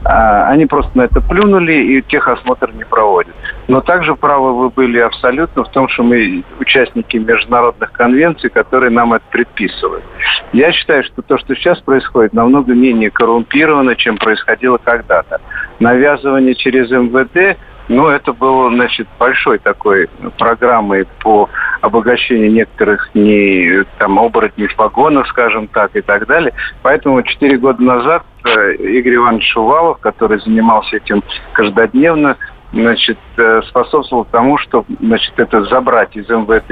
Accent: native